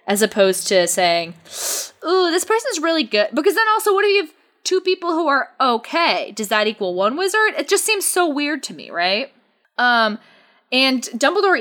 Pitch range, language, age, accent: 185-290 Hz, English, 20-39, American